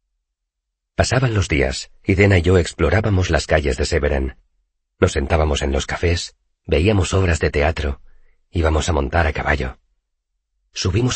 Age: 40-59